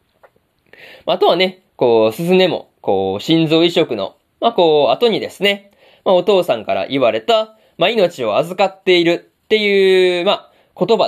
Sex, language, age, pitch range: male, Japanese, 20-39, 150-205 Hz